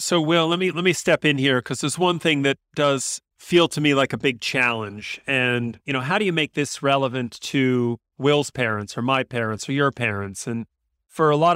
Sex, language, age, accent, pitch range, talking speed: male, English, 30-49, American, 120-150 Hz, 230 wpm